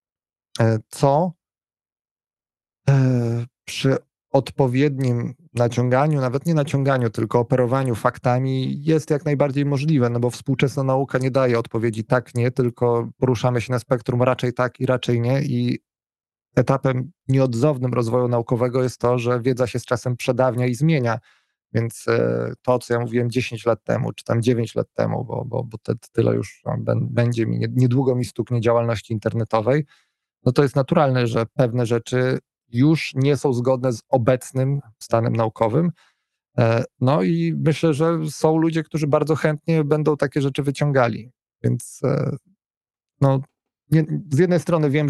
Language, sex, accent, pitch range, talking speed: Polish, male, native, 120-140 Hz, 145 wpm